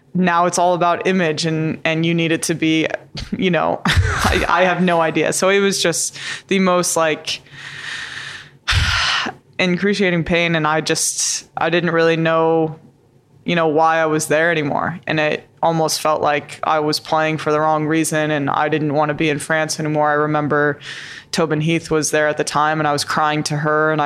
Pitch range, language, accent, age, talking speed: 145-165 Hz, English, American, 20-39, 195 wpm